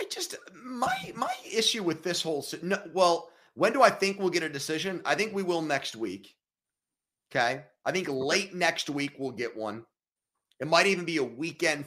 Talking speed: 195 wpm